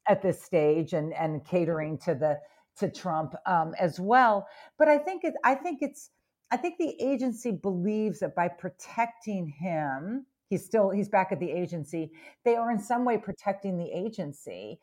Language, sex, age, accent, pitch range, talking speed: English, female, 50-69, American, 170-230 Hz, 180 wpm